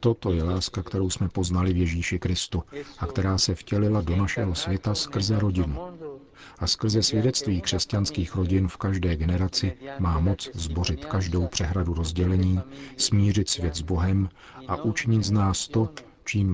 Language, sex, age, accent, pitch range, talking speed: Czech, male, 50-69, native, 90-110 Hz, 150 wpm